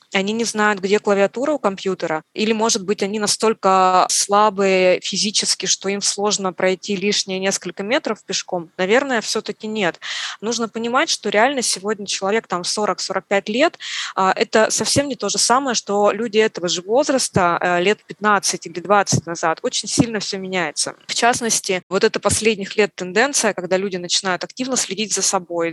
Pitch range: 185-220 Hz